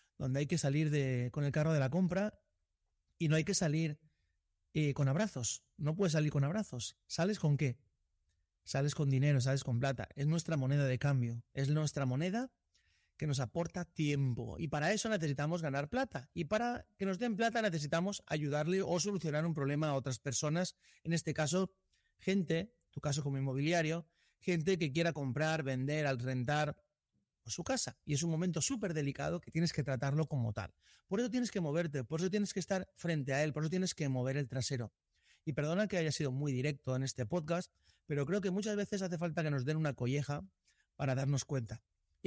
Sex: male